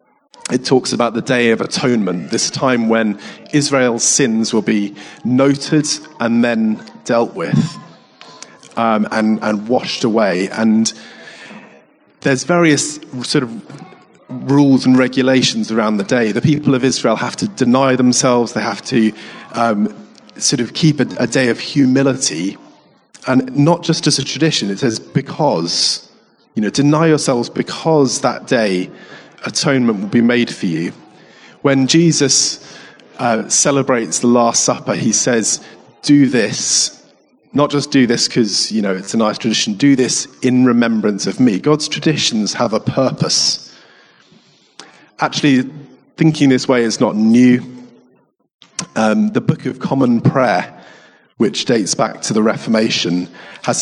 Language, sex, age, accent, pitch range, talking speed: English, male, 30-49, British, 115-145 Hz, 145 wpm